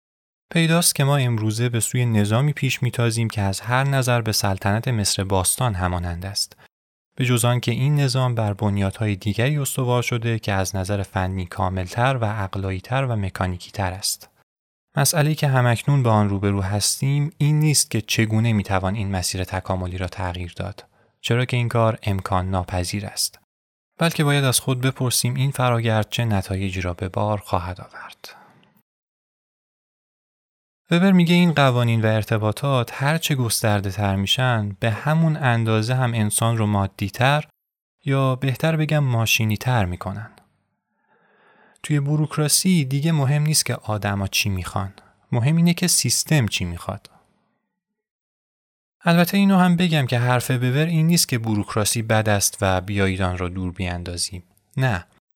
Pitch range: 100-135 Hz